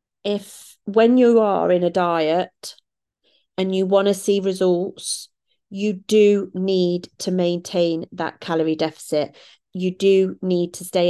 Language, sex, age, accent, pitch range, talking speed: English, female, 30-49, British, 165-200 Hz, 140 wpm